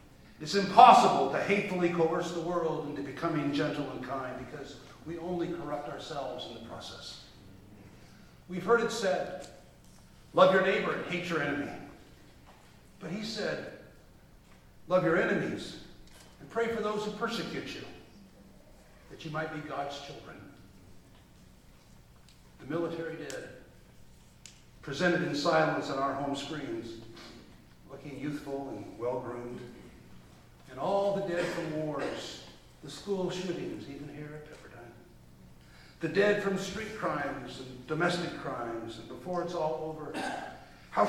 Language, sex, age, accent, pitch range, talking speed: English, male, 50-69, American, 130-175 Hz, 135 wpm